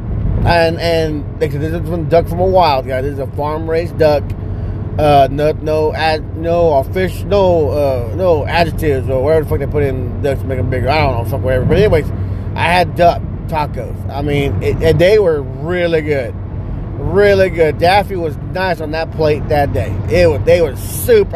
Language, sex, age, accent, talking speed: English, male, 30-49, American, 205 wpm